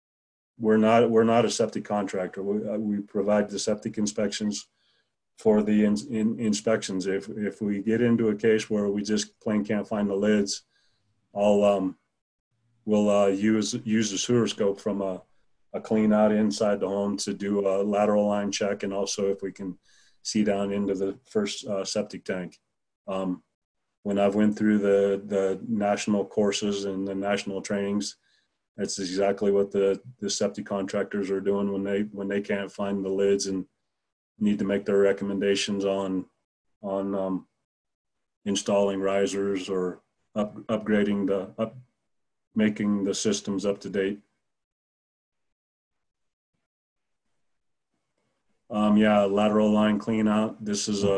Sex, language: male, English